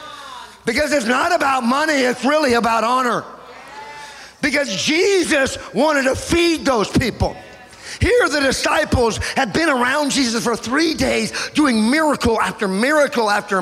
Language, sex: English, male